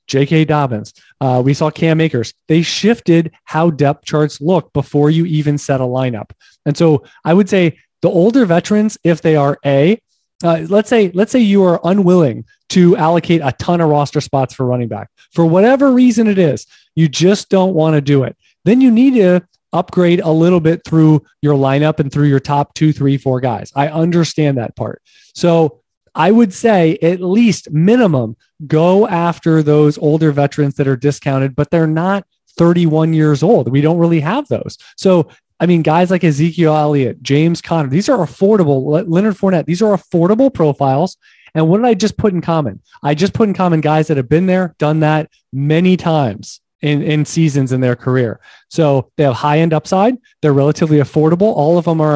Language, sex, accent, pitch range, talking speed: English, male, American, 145-180 Hz, 195 wpm